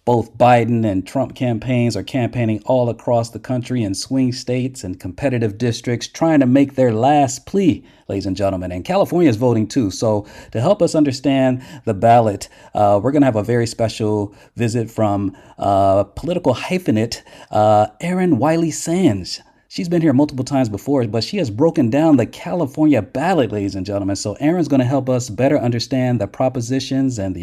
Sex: male